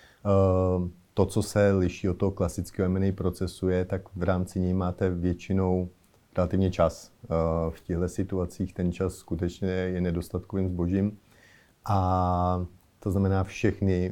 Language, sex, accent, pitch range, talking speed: Czech, male, native, 90-95 Hz, 130 wpm